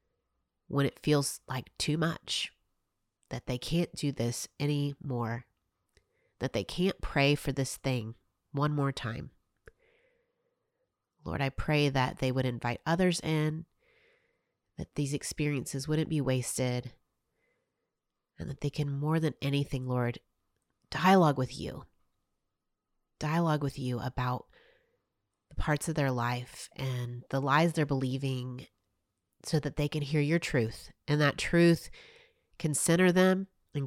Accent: American